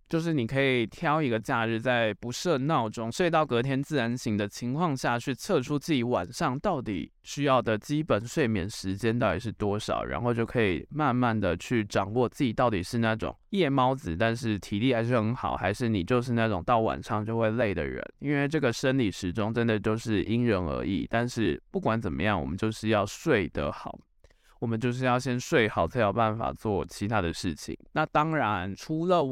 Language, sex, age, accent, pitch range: Chinese, male, 20-39, native, 110-140 Hz